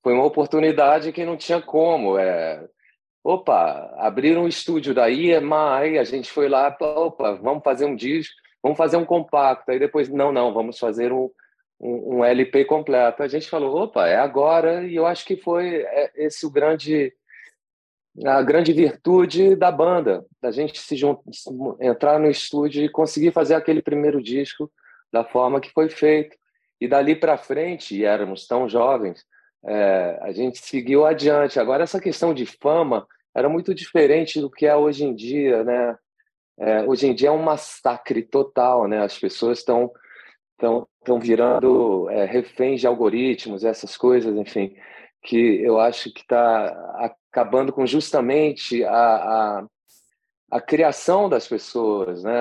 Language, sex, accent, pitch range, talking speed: Portuguese, male, Brazilian, 120-155 Hz, 160 wpm